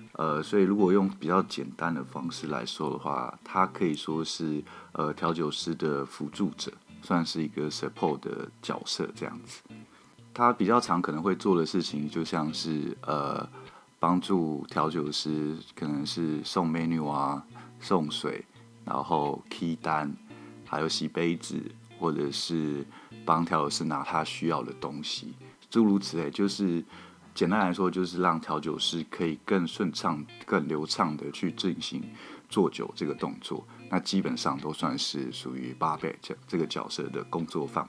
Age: 20-39